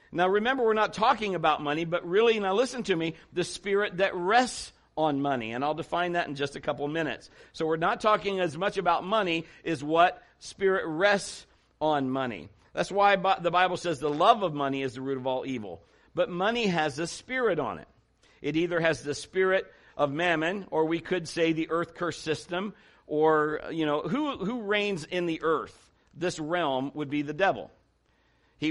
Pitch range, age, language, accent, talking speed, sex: 145-190 Hz, 60-79, English, American, 200 wpm, male